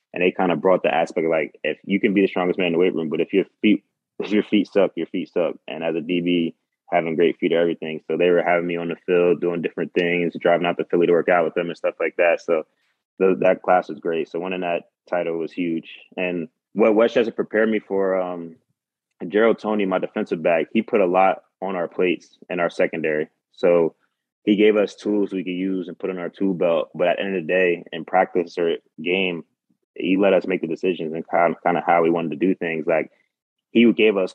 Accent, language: American, English